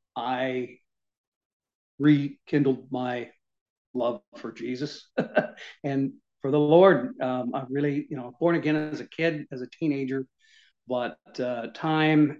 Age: 50-69